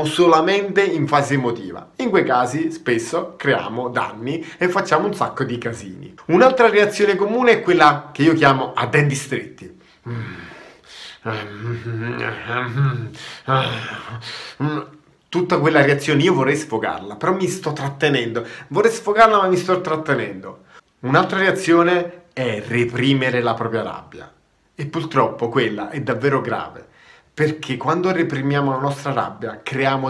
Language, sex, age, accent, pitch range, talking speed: Italian, male, 30-49, native, 120-160 Hz, 125 wpm